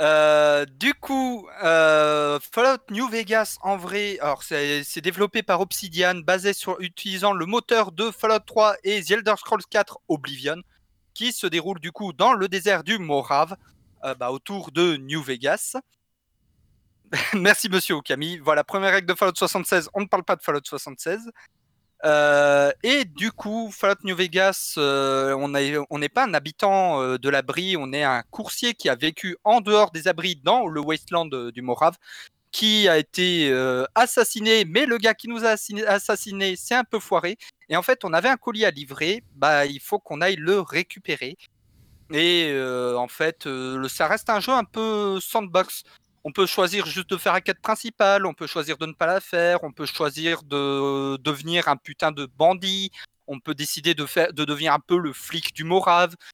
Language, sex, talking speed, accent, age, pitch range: French, male, 190 wpm, French, 30-49, 150-200 Hz